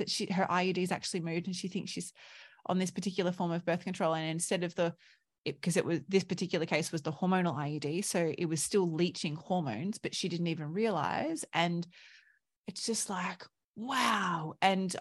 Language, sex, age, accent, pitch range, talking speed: English, female, 30-49, Australian, 170-215 Hz, 200 wpm